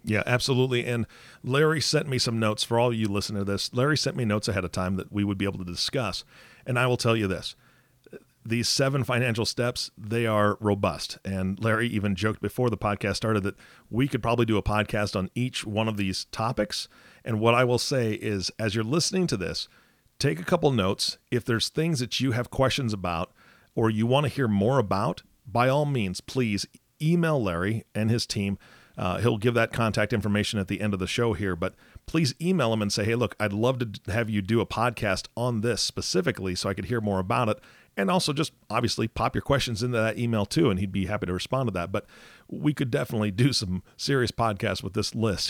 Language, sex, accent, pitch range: English, male, American, 100-125 Hz